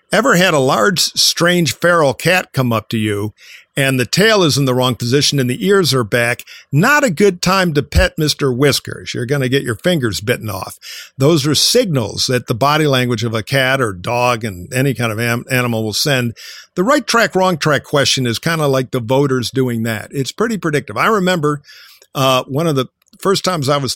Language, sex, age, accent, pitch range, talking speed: English, male, 50-69, American, 125-170 Hz, 220 wpm